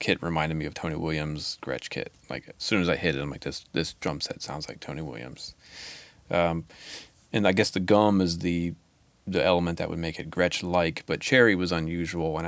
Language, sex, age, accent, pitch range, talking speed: English, male, 30-49, American, 80-95 Hz, 220 wpm